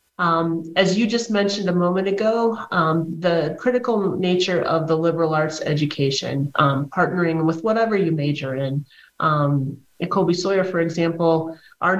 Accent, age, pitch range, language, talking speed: American, 30-49, 155-190 Hz, English, 155 wpm